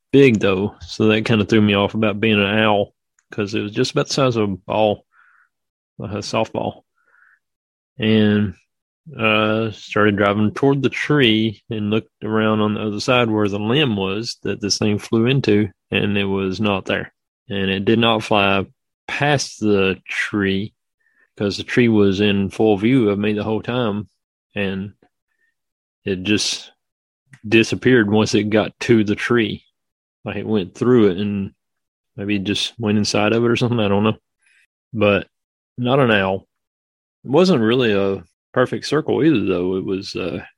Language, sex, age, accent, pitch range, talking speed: English, male, 30-49, American, 100-115 Hz, 170 wpm